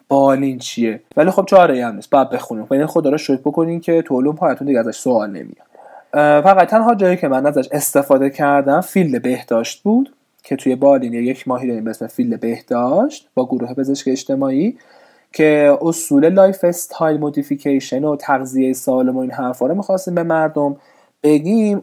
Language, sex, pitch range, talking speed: Persian, male, 130-175 Hz, 160 wpm